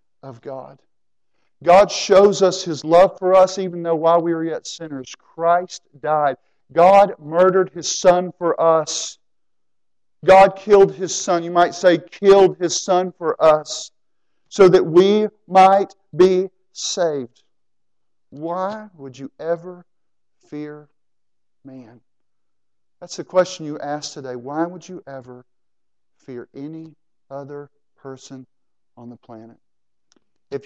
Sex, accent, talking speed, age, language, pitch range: male, American, 130 wpm, 50-69, English, 135-175 Hz